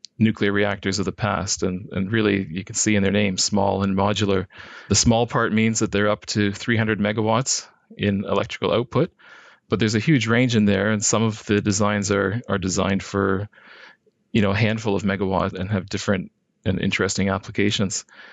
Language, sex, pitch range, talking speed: English, male, 95-110 Hz, 190 wpm